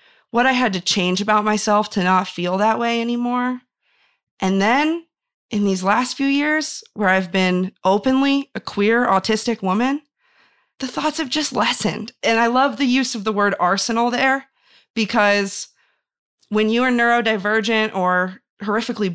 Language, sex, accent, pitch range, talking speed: English, female, American, 180-230 Hz, 155 wpm